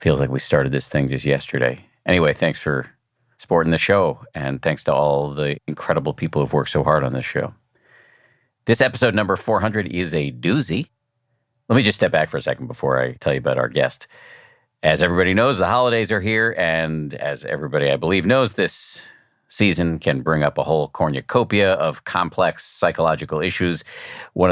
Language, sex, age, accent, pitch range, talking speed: English, male, 50-69, American, 80-120 Hz, 185 wpm